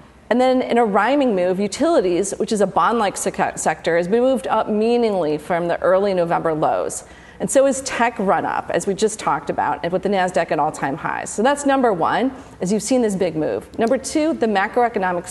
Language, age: English, 40-59